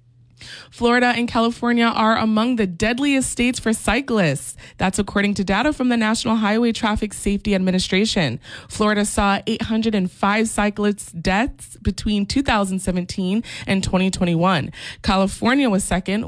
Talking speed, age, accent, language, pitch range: 120 wpm, 20-39, American, English, 190-235 Hz